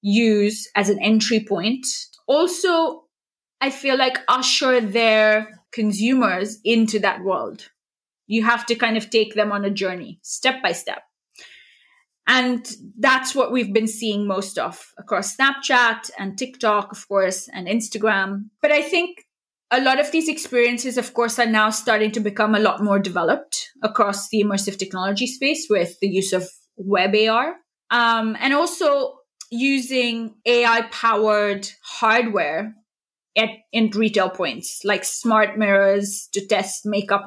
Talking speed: 145 wpm